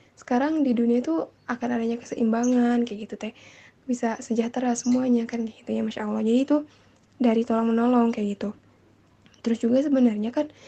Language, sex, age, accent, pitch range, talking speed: Indonesian, female, 10-29, native, 225-255 Hz, 155 wpm